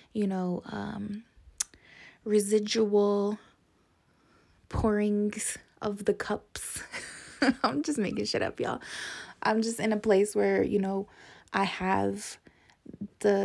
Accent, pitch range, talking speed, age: American, 190-225 Hz, 110 wpm, 20-39